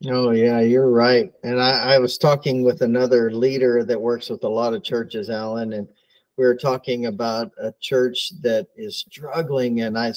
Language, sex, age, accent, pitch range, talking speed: English, male, 50-69, American, 115-145 Hz, 190 wpm